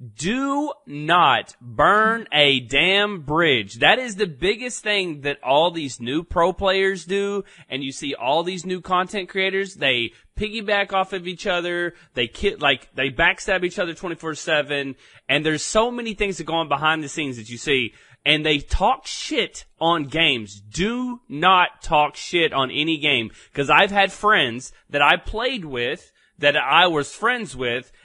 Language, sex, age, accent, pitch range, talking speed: English, male, 30-49, American, 140-195 Hz, 170 wpm